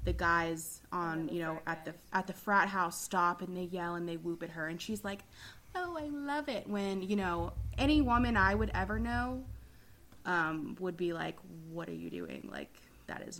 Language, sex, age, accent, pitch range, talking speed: English, female, 20-39, American, 160-200 Hz, 210 wpm